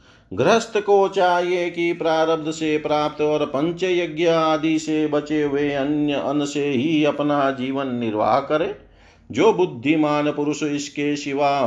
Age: 40-59